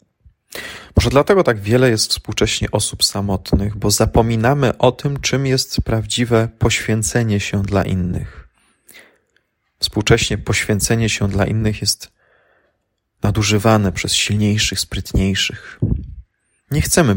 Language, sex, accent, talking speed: Polish, male, native, 110 wpm